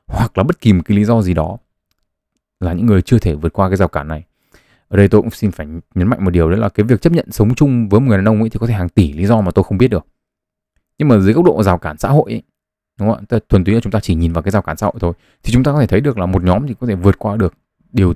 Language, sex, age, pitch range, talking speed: Vietnamese, male, 20-39, 90-115 Hz, 330 wpm